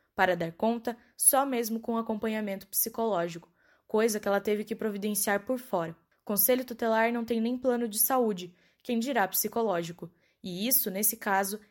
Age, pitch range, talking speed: 10-29, 185-230 Hz, 160 wpm